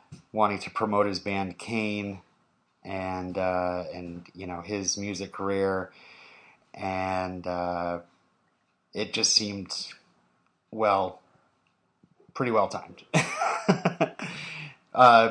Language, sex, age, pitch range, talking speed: English, male, 30-49, 95-115 Hz, 90 wpm